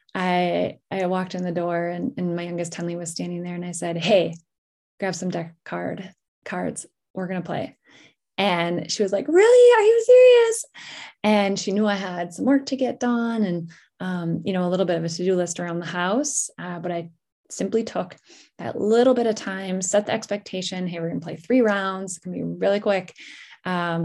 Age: 10-29